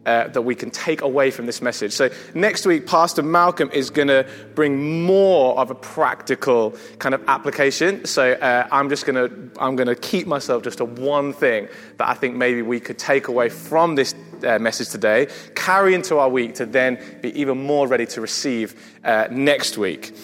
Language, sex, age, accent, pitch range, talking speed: English, male, 20-39, British, 120-165 Hz, 200 wpm